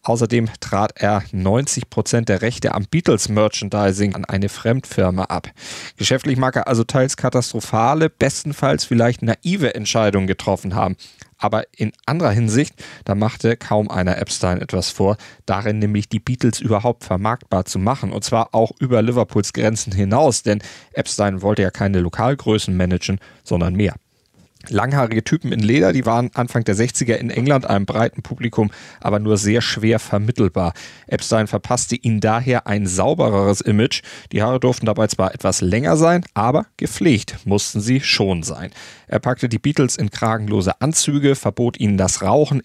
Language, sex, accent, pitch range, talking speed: German, male, German, 100-125 Hz, 155 wpm